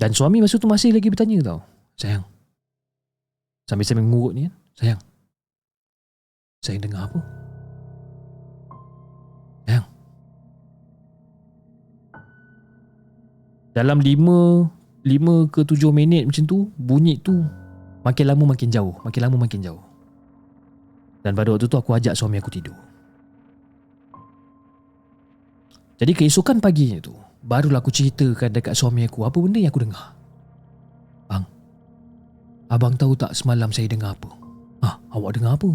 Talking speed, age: 120 wpm, 20-39